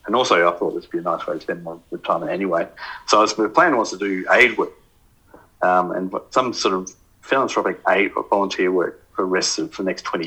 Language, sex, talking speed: English, male, 235 wpm